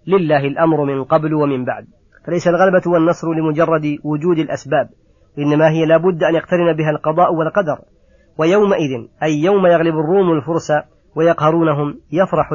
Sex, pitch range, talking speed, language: female, 145-165 Hz, 135 wpm, Arabic